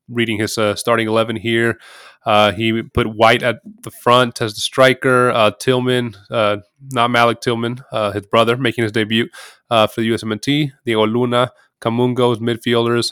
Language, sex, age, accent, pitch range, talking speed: English, male, 20-39, American, 110-120 Hz, 165 wpm